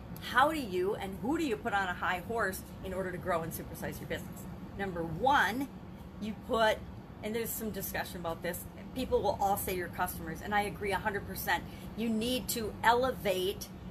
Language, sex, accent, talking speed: English, female, American, 190 wpm